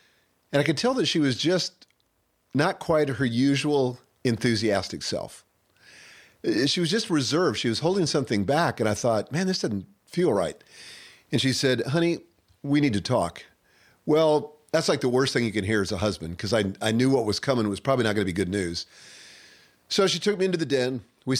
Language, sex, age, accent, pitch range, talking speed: English, male, 40-59, American, 115-165 Hz, 205 wpm